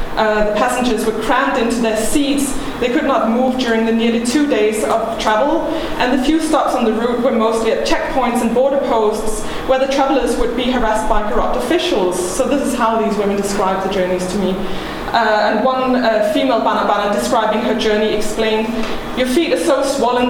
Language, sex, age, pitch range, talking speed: English, female, 20-39, 220-275 Hz, 200 wpm